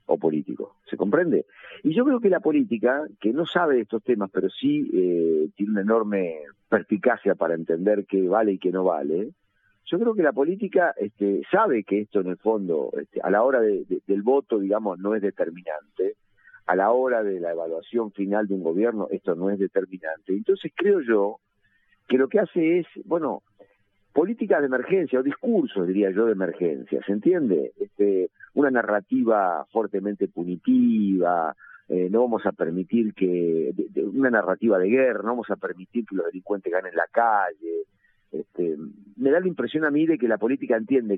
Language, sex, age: Spanish, male, 50-69